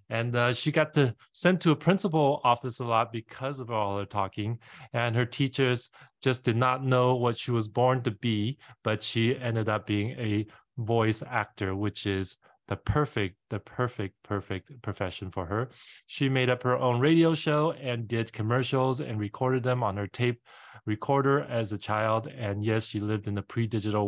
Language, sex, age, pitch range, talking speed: English, male, 20-39, 105-130 Hz, 185 wpm